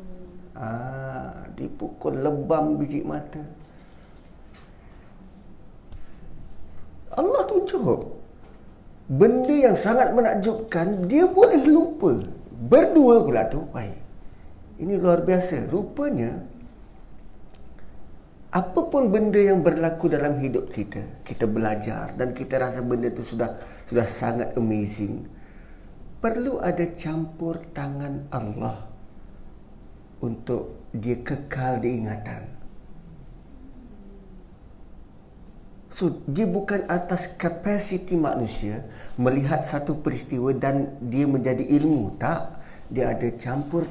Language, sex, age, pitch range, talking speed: Malay, male, 50-69, 115-175 Hz, 90 wpm